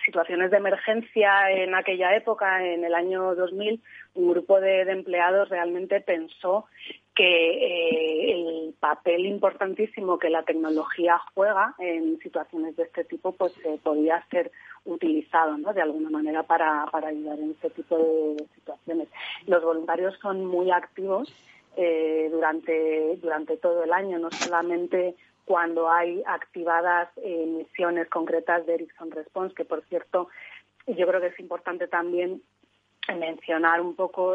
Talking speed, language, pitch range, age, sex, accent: 145 wpm, Spanish, 160-185 Hz, 30-49, female, Spanish